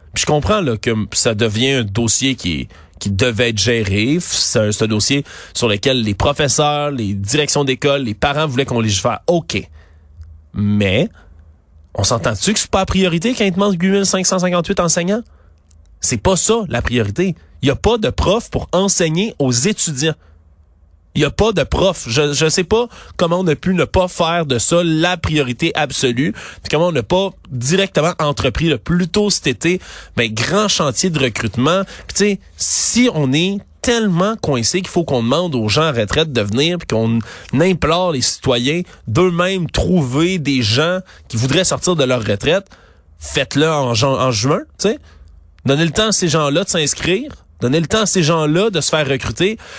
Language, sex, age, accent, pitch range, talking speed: French, male, 30-49, Canadian, 110-170 Hz, 185 wpm